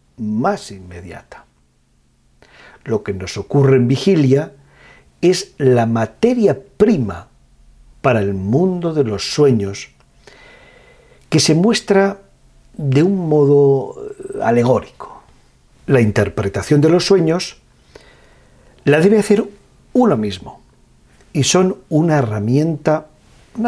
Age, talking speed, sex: 50-69, 100 wpm, male